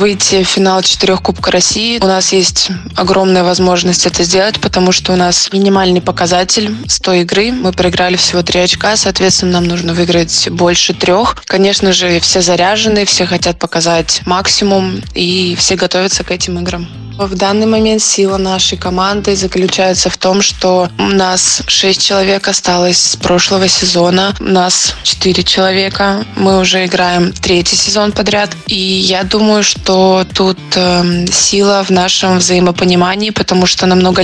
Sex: female